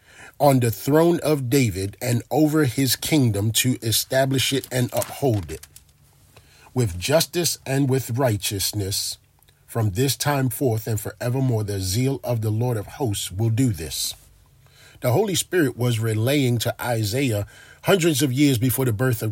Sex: male